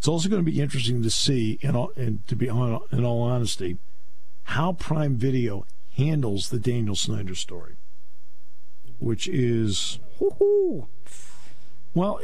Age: 50-69